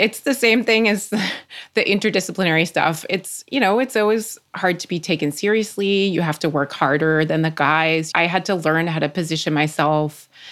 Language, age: English, 30-49